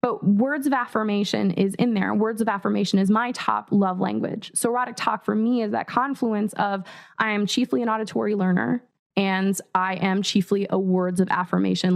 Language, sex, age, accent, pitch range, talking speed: English, female, 20-39, American, 195-245 Hz, 190 wpm